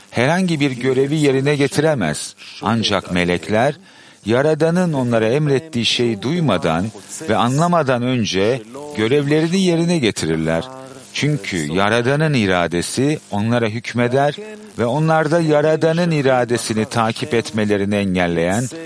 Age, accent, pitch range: 50-69, native, 100-150 Hz